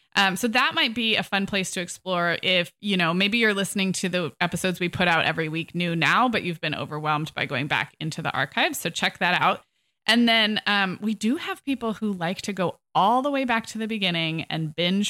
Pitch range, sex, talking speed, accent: 170-215 Hz, female, 240 wpm, American